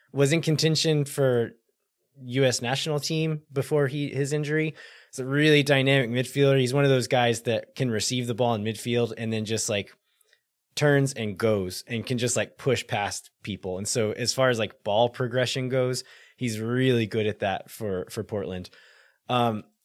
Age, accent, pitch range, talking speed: 20-39, American, 110-135 Hz, 180 wpm